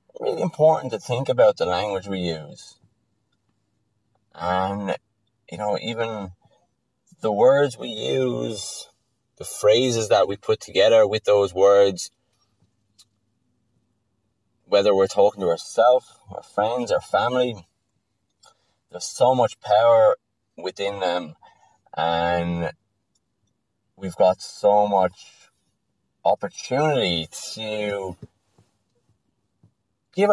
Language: English